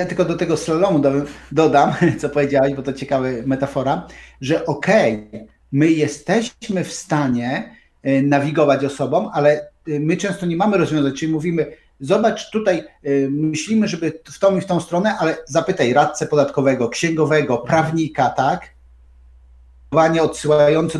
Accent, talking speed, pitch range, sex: native, 135 wpm, 140-175 Hz, male